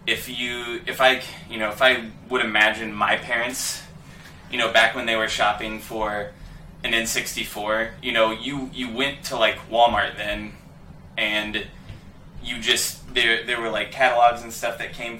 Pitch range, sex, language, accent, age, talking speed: 110-125 Hz, male, English, American, 20-39, 170 wpm